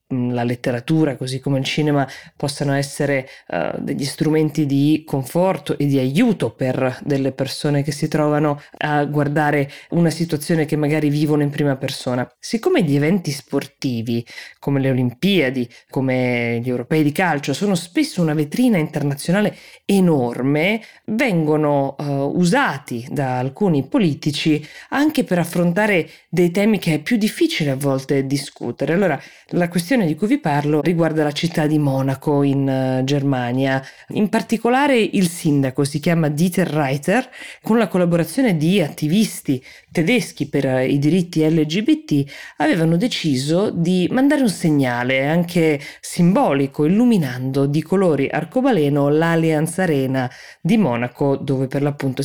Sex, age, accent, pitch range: female, 20-39, native, 140-175 Hz